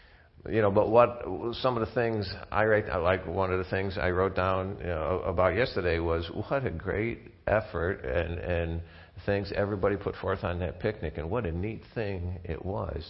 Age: 50-69